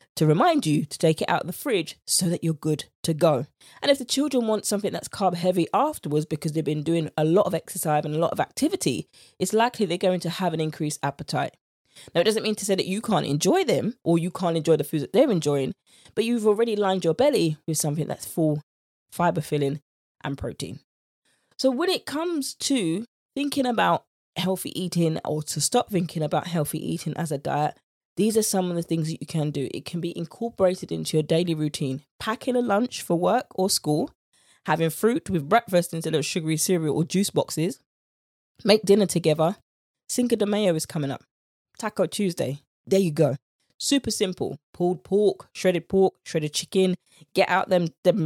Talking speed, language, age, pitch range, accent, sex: 205 wpm, English, 20-39, 155-200 Hz, British, female